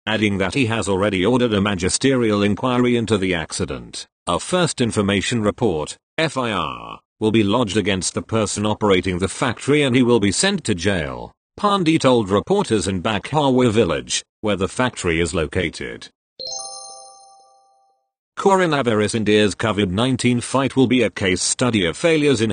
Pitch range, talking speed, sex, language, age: 100-130 Hz, 150 wpm, male, English, 40-59